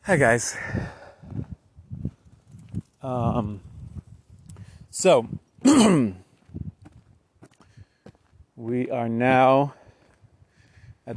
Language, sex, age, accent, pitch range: English, male, 30-49, American, 105-125 Hz